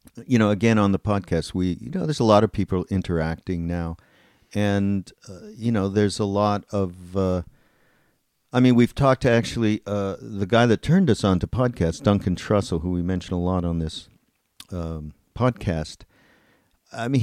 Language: English